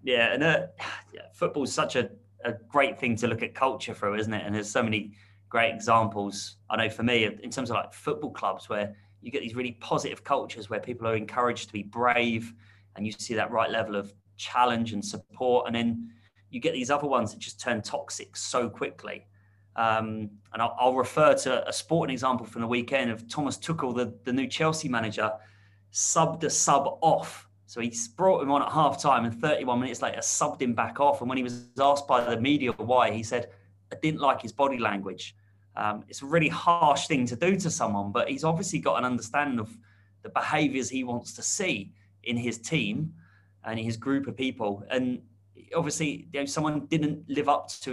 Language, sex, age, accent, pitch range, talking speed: English, male, 30-49, British, 105-130 Hz, 210 wpm